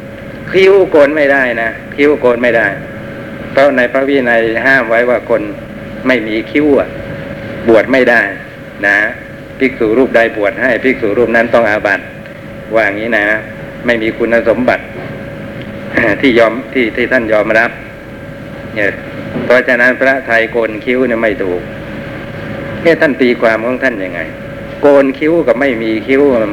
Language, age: Thai, 60-79